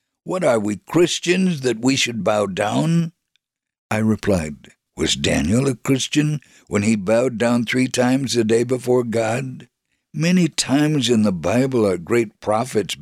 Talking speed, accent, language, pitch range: 150 wpm, American, English, 105-135 Hz